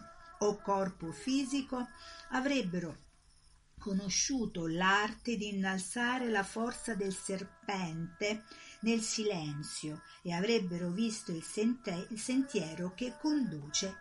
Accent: native